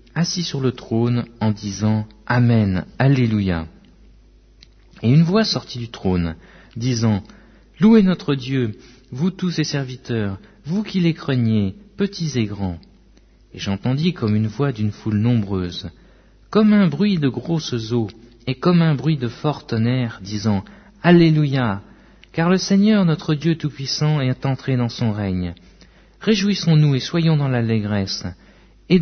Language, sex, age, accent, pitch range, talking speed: French, male, 50-69, French, 105-155 Hz, 145 wpm